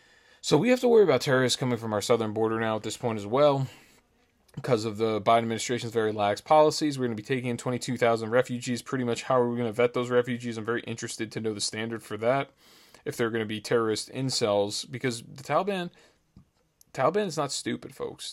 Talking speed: 225 wpm